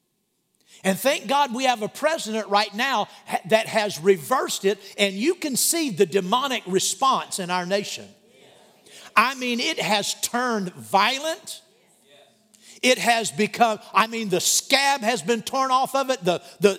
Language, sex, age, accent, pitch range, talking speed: English, male, 50-69, American, 190-255 Hz, 155 wpm